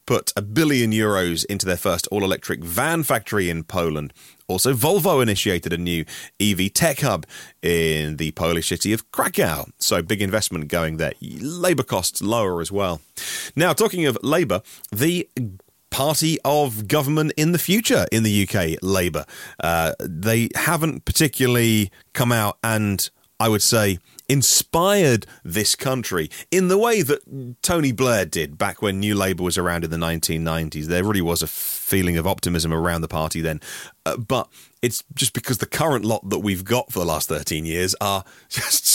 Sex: male